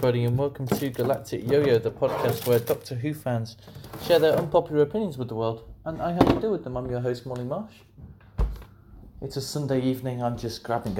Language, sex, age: English, male, 30-49